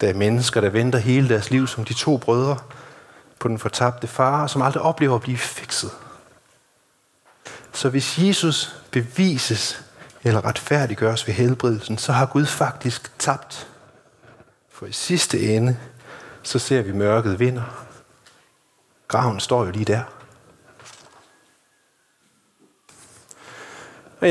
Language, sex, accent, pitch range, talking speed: Danish, male, native, 115-140 Hz, 125 wpm